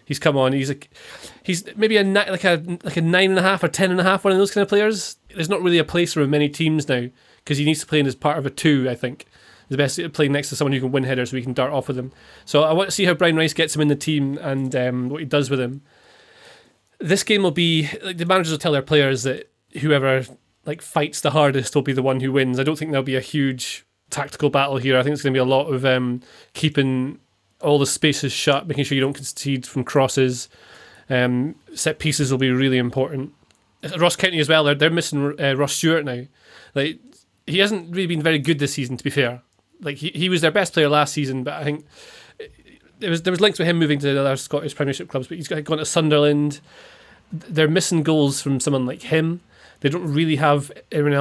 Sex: male